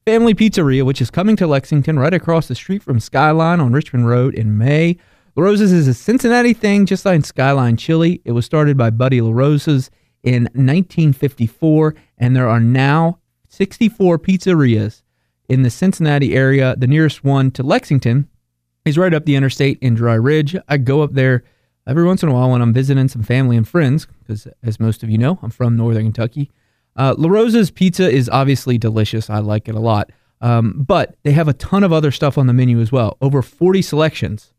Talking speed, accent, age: 200 wpm, American, 30-49